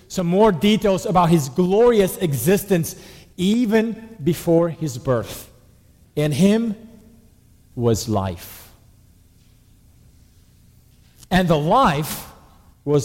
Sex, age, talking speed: male, 40-59, 85 wpm